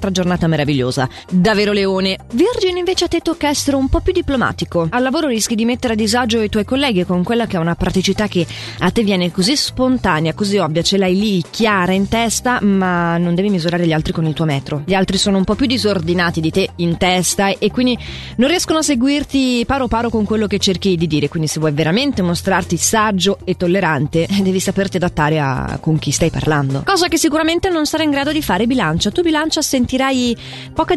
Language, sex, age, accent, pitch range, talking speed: Italian, female, 20-39, native, 175-235 Hz, 210 wpm